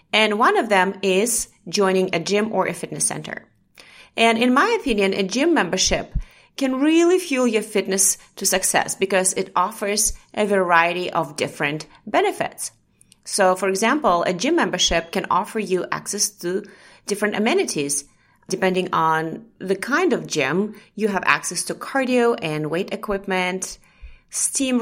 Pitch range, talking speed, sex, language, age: 190-250 Hz, 150 wpm, female, English, 30-49